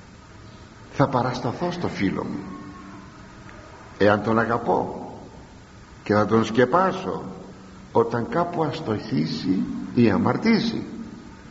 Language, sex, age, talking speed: Greek, male, 60-79, 90 wpm